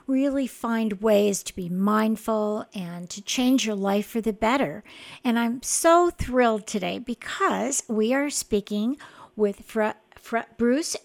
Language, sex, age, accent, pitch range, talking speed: English, female, 50-69, American, 205-255 Hz, 135 wpm